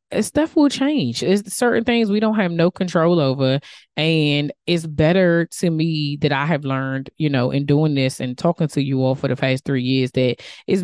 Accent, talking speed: American, 210 wpm